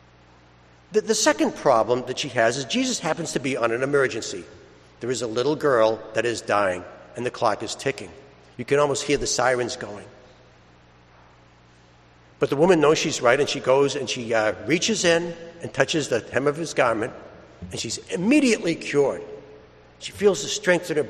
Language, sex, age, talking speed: English, male, 60-79, 185 wpm